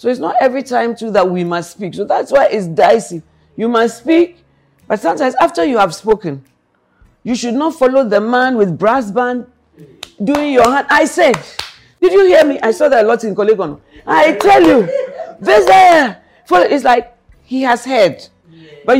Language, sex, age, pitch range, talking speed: English, female, 50-69, 195-260 Hz, 185 wpm